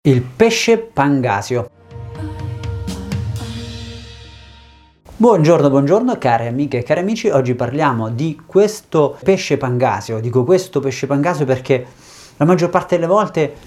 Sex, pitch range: male, 120-165 Hz